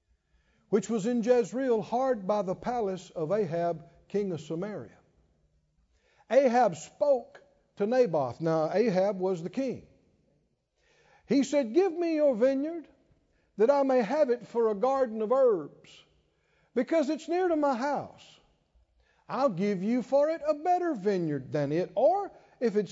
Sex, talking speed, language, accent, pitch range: male, 150 wpm, English, American, 180-265 Hz